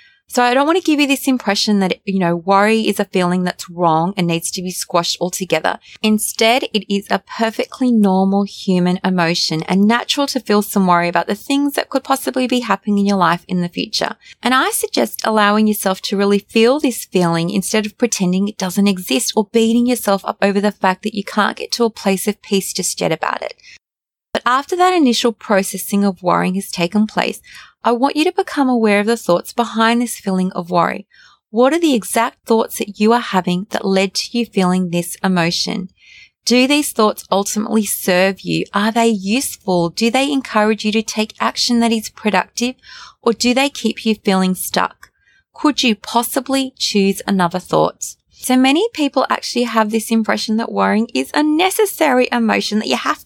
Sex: female